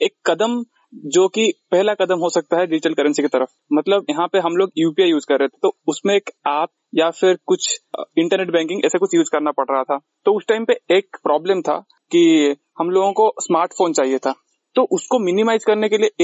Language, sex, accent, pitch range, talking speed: Hindi, male, native, 160-235 Hz, 220 wpm